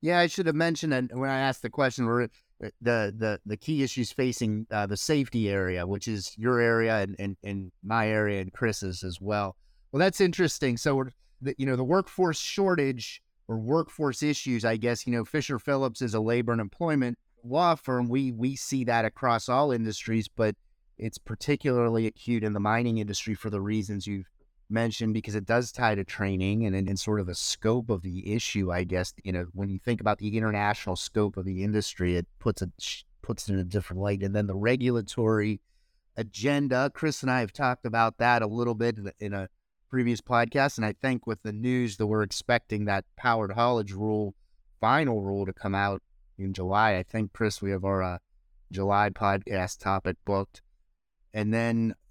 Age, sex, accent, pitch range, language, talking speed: 30-49, male, American, 100-125 Hz, English, 195 wpm